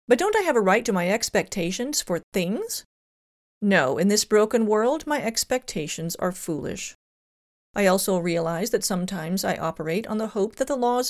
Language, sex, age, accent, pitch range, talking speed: English, female, 40-59, American, 180-250 Hz, 180 wpm